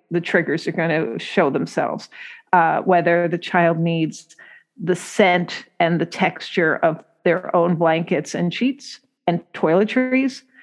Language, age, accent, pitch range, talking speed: English, 50-69, American, 165-190 Hz, 140 wpm